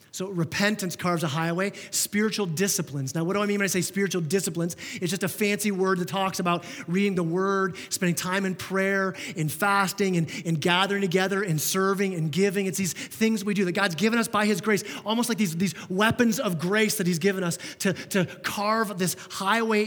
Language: English